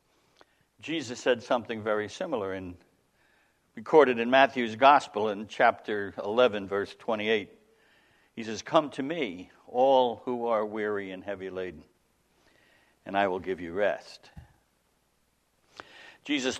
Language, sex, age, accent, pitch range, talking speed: English, male, 60-79, American, 115-160 Hz, 125 wpm